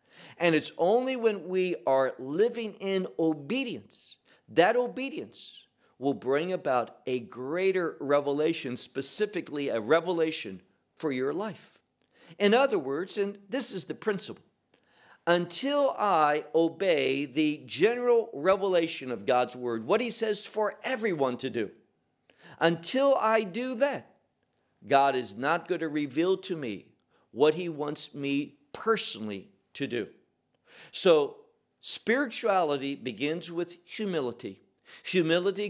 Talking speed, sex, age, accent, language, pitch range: 125 wpm, male, 50-69, American, English, 145-215 Hz